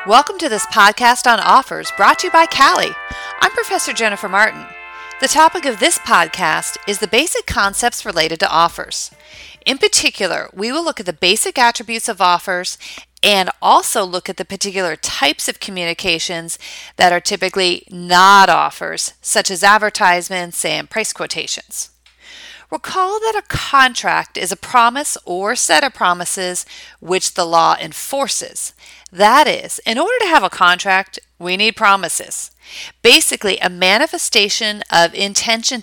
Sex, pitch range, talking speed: female, 175-240 Hz, 150 wpm